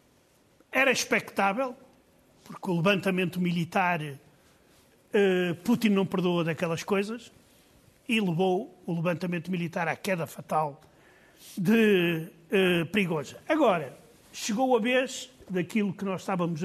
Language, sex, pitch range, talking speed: Portuguese, male, 175-230 Hz, 110 wpm